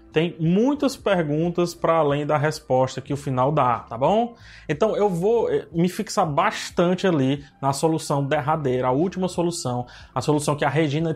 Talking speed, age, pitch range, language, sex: 165 wpm, 20-39, 135-175 Hz, Portuguese, male